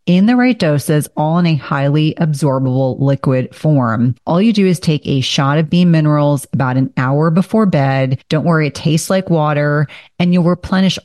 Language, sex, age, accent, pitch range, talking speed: English, female, 30-49, American, 140-180 Hz, 190 wpm